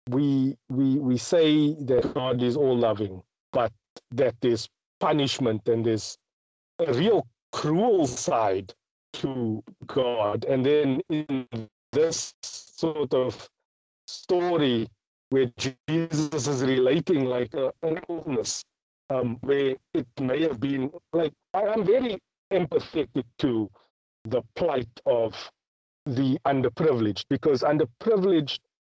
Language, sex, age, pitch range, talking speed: English, male, 50-69, 120-155 Hz, 110 wpm